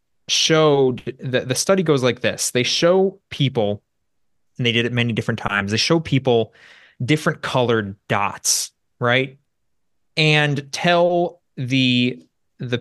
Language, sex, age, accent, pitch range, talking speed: English, male, 20-39, American, 115-150 Hz, 130 wpm